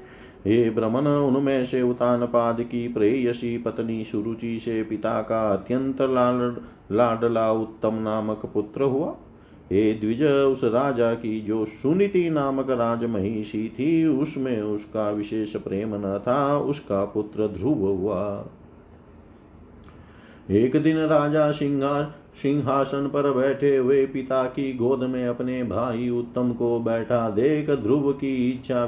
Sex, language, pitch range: male, Hindi, 110-140 Hz